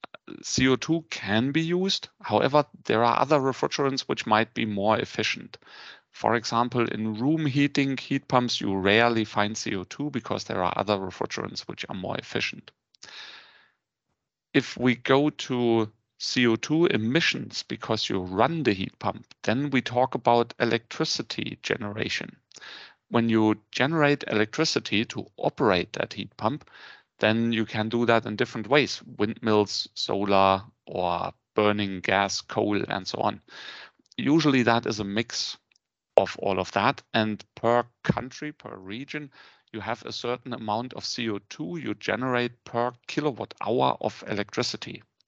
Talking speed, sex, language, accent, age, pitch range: 140 wpm, male, English, German, 40-59, 105-130 Hz